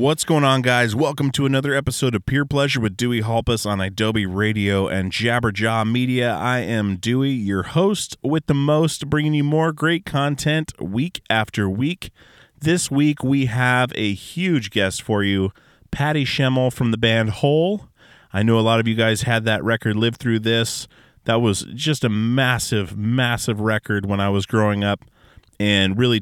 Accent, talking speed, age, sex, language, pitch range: American, 180 wpm, 30-49, male, English, 100-125 Hz